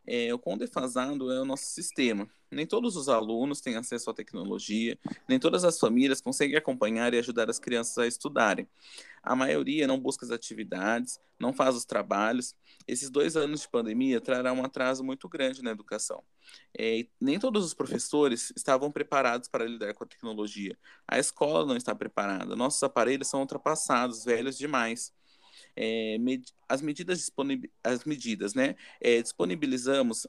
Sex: male